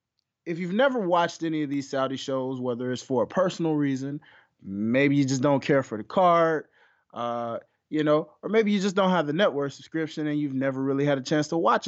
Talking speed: 215 wpm